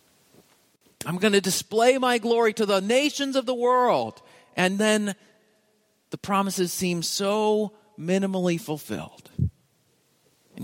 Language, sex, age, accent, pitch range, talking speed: English, male, 40-59, American, 155-235 Hz, 120 wpm